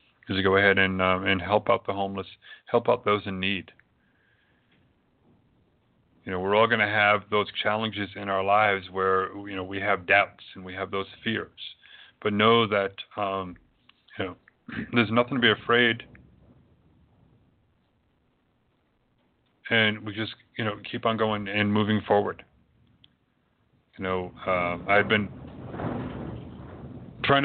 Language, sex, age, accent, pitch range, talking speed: English, male, 40-59, American, 95-110 Hz, 145 wpm